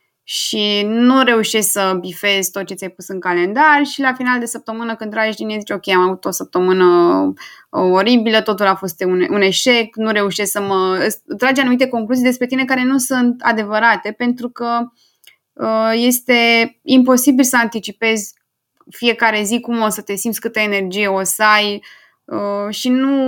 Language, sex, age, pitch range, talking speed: Romanian, female, 20-39, 205-245 Hz, 175 wpm